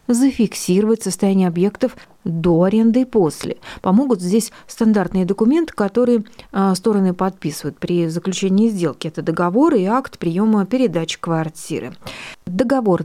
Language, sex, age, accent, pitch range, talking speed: Russian, female, 30-49, native, 180-230 Hz, 115 wpm